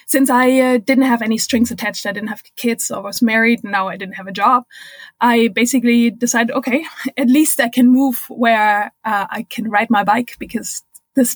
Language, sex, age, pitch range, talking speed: English, female, 20-39, 220-255 Hz, 215 wpm